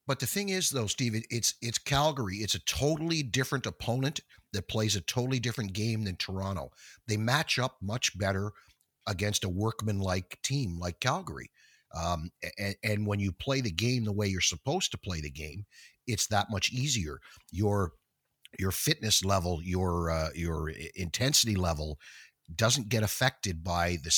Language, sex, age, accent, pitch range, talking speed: English, male, 50-69, American, 85-110 Hz, 165 wpm